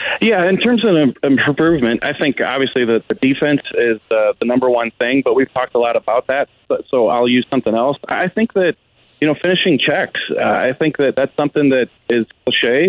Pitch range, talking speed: 120-150 Hz, 210 wpm